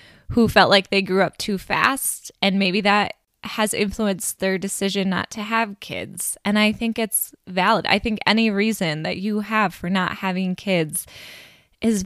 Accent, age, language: American, 20-39, English